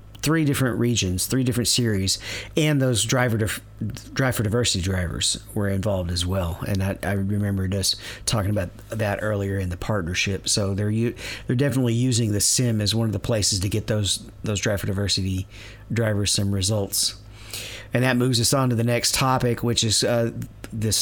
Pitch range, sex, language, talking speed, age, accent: 100-125 Hz, male, English, 185 wpm, 40-59, American